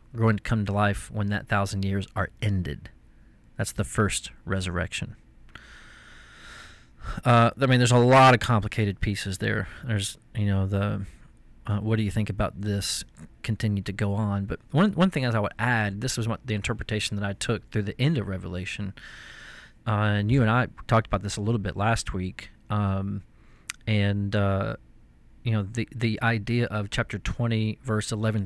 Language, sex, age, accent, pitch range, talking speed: English, male, 30-49, American, 100-115 Hz, 185 wpm